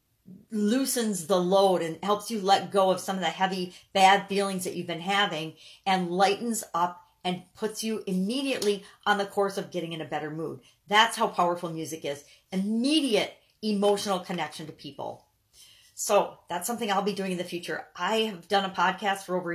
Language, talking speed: English, 185 wpm